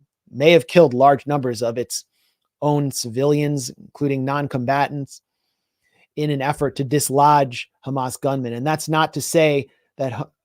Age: 30-49